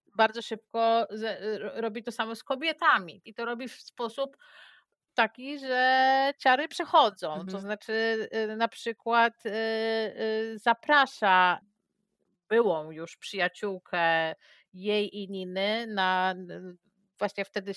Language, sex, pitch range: Polish, female, 180-225 Hz